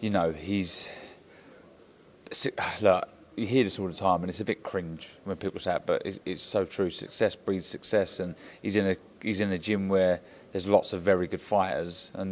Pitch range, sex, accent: 90-115 Hz, male, British